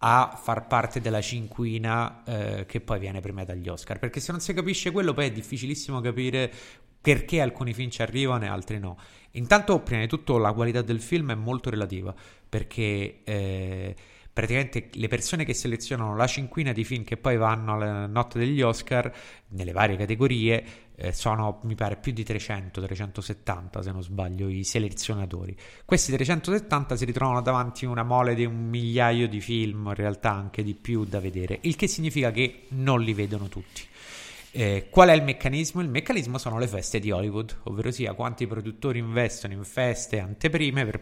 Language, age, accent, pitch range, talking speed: Italian, 30-49, native, 105-130 Hz, 180 wpm